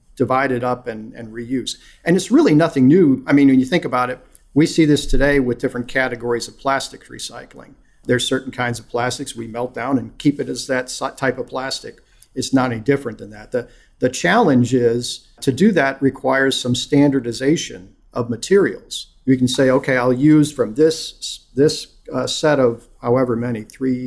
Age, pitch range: 50-69, 120-145 Hz